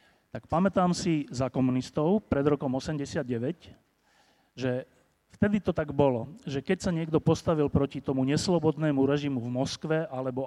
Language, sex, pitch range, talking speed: Slovak, male, 135-165 Hz, 145 wpm